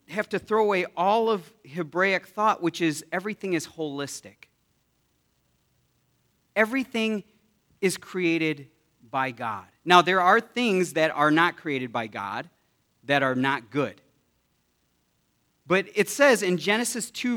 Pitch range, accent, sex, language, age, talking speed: 135-190 Hz, American, male, English, 40-59, 130 wpm